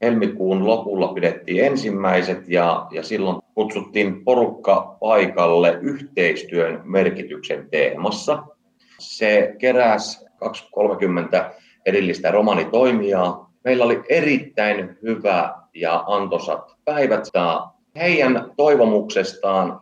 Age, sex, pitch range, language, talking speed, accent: 30-49, male, 90-120 Hz, Finnish, 90 wpm, native